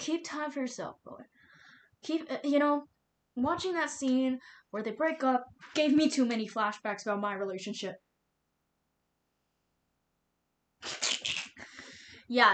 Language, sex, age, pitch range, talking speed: English, female, 10-29, 190-295 Hz, 115 wpm